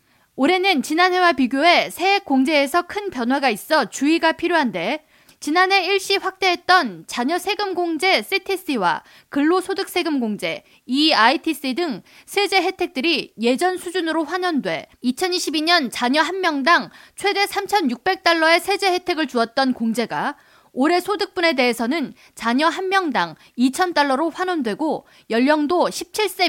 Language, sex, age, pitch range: Korean, female, 20-39, 260-365 Hz